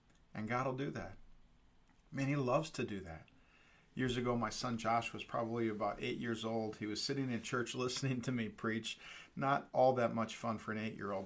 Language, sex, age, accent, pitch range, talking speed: English, male, 40-59, American, 115-140 Hz, 210 wpm